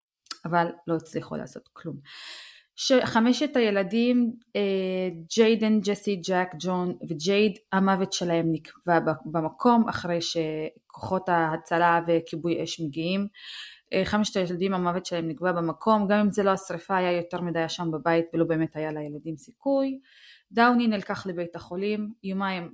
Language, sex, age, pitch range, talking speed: Hebrew, female, 20-39, 170-215 Hz, 125 wpm